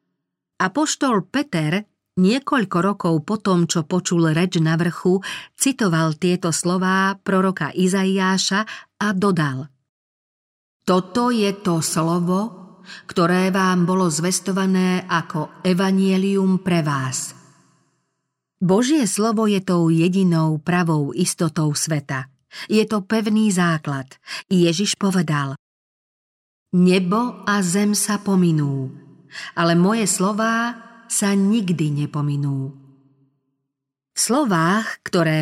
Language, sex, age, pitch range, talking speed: Slovak, female, 50-69, 160-200 Hz, 95 wpm